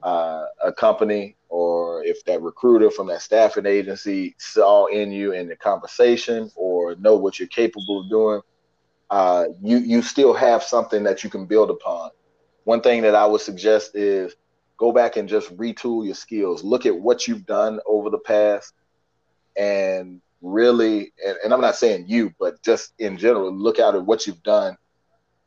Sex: male